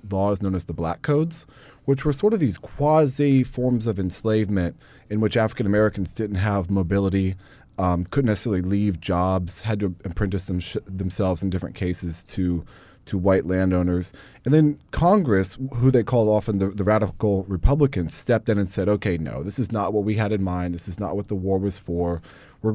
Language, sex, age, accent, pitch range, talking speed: English, male, 20-39, American, 95-125 Hz, 195 wpm